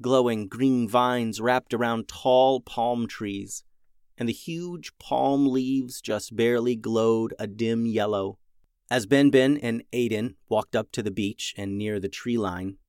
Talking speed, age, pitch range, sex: 155 wpm, 30-49, 95-130 Hz, male